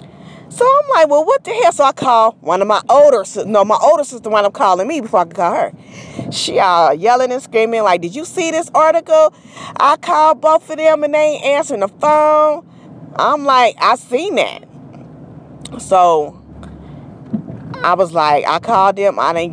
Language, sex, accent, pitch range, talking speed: English, female, American, 165-240 Hz, 195 wpm